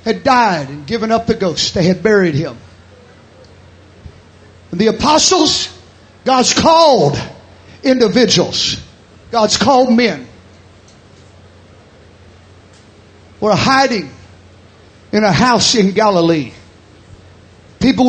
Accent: American